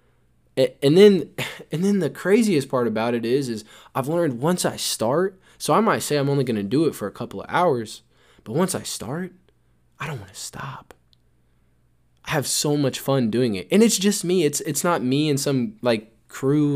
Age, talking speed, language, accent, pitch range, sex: 20-39, 210 wpm, English, American, 105-135 Hz, male